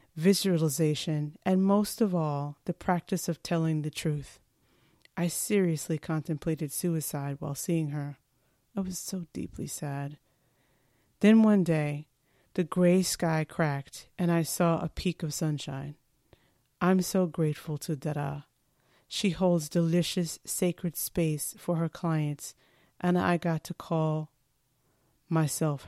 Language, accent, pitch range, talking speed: English, American, 145-180 Hz, 130 wpm